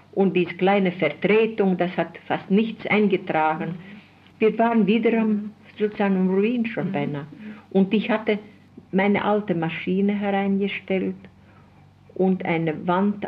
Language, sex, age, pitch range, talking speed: German, female, 60-79, 165-200 Hz, 120 wpm